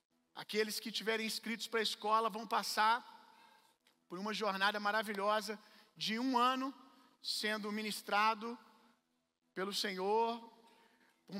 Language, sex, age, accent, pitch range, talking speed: Gujarati, male, 40-59, Brazilian, 200-230 Hz, 115 wpm